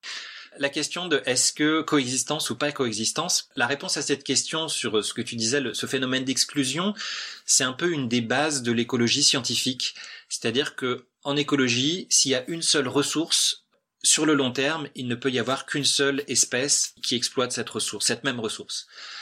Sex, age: male, 30-49